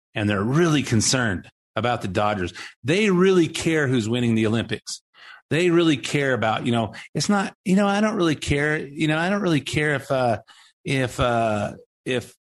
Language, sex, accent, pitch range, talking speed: English, male, American, 110-145 Hz, 185 wpm